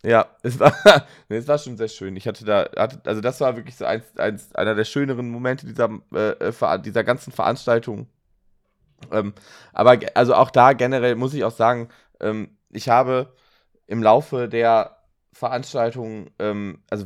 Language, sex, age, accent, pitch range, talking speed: German, male, 20-39, German, 100-125 Hz, 170 wpm